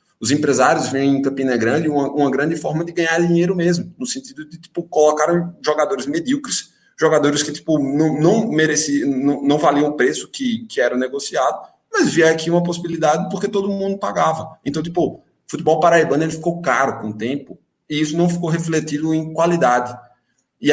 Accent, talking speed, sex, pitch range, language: Brazilian, 185 wpm, male, 155-200 Hz, Portuguese